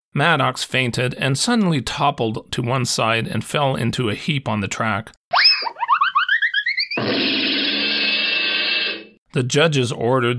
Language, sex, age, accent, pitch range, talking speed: English, male, 40-59, American, 110-150 Hz, 110 wpm